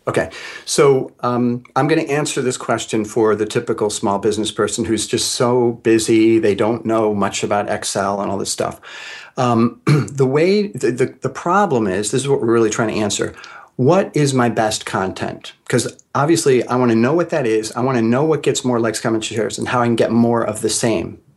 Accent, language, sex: American, English, male